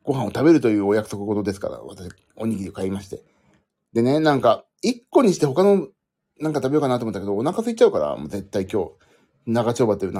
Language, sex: Japanese, male